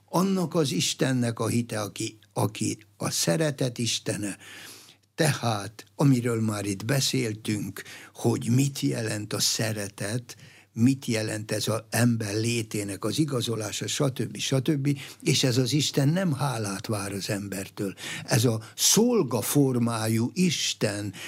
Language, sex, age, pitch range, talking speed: Hungarian, male, 60-79, 115-150 Hz, 120 wpm